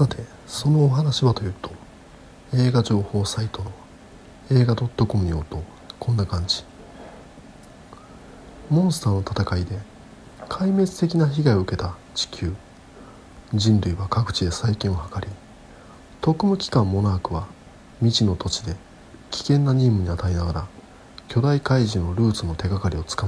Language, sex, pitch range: Japanese, male, 90-120 Hz